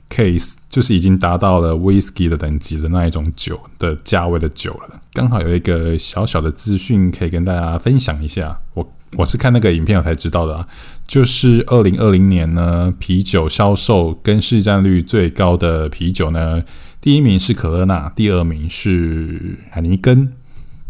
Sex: male